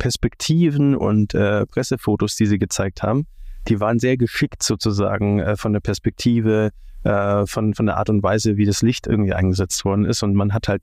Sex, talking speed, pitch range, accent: male, 195 wpm, 100-115 Hz, German